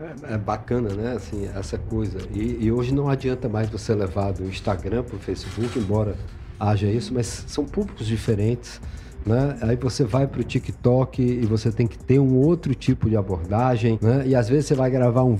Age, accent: 50-69, Brazilian